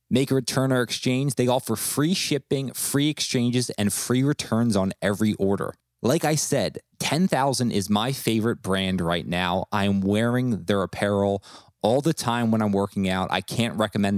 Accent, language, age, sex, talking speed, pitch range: American, English, 20-39, male, 180 wpm, 105-135 Hz